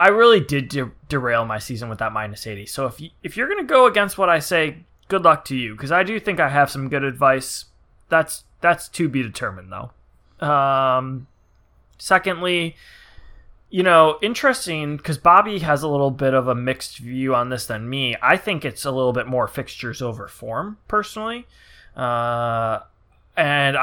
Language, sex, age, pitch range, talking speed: English, male, 20-39, 115-150 Hz, 180 wpm